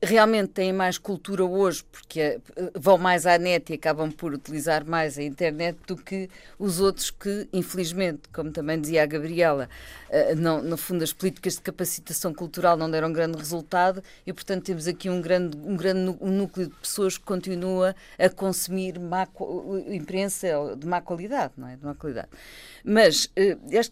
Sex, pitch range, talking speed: female, 155-195 Hz, 175 wpm